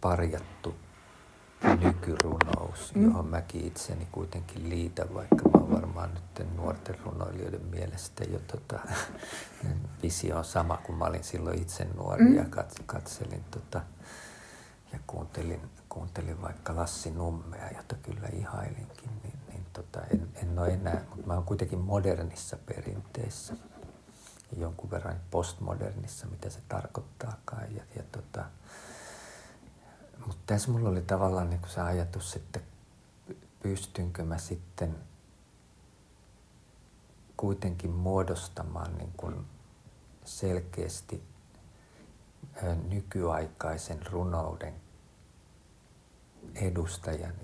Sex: male